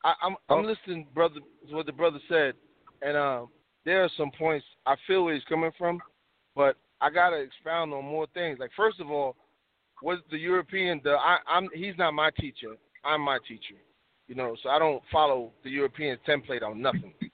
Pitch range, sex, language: 150-185 Hz, male, English